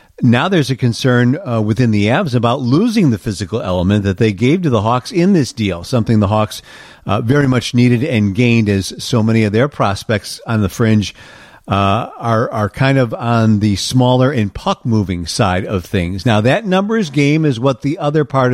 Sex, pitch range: male, 110-140 Hz